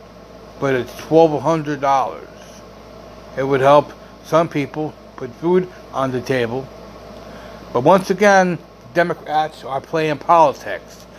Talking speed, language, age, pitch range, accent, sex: 105 wpm, English, 60-79, 145-215 Hz, American, male